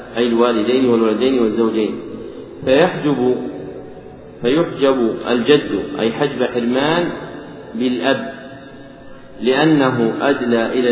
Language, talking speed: Arabic, 75 wpm